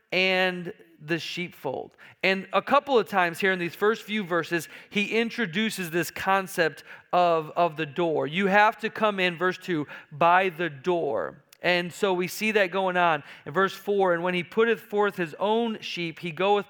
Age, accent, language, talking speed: 40-59, American, English, 185 wpm